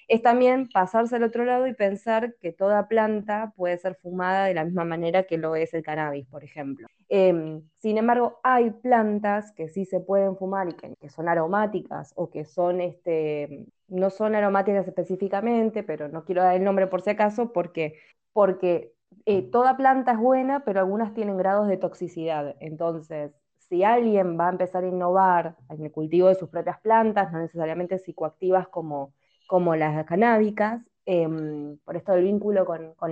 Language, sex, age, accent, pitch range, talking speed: Spanish, female, 20-39, Argentinian, 160-200 Hz, 175 wpm